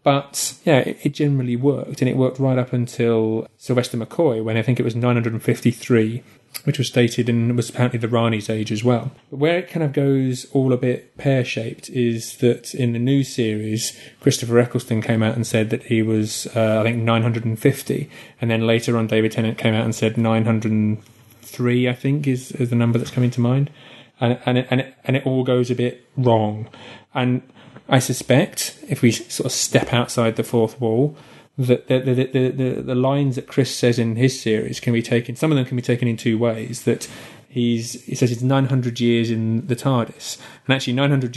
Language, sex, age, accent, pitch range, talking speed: English, male, 30-49, British, 115-130 Hz, 205 wpm